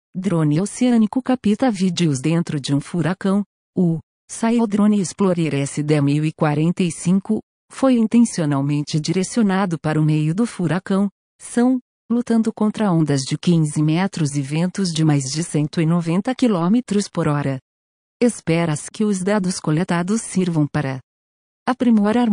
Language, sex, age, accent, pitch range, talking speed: Portuguese, female, 50-69, Brazilian, 150-205 Hz, 120 wpm